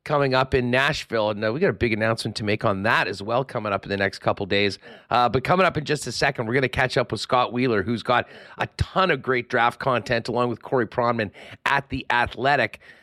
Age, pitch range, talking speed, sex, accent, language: 40-59, 125-155 Hz, 250 wpm, male, American, English